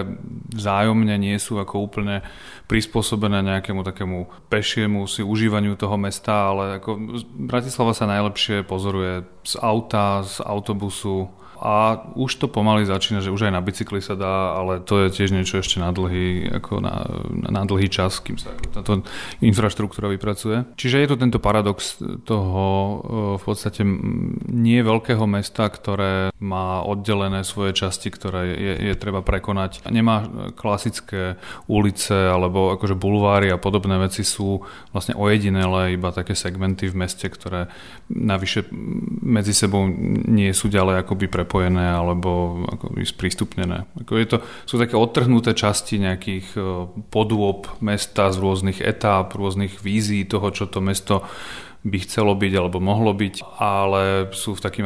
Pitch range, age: 95-105 Hz, 30-49